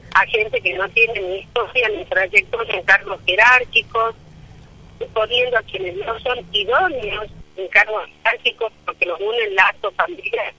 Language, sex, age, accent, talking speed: Spanish, female, 50-69, American, 145 wpm